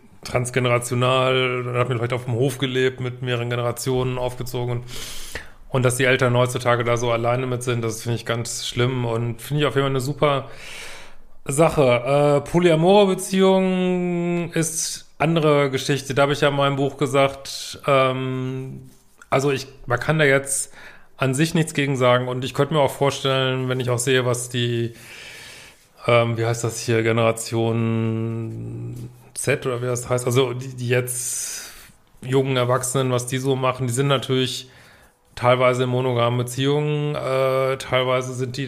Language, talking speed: German, 165 wpm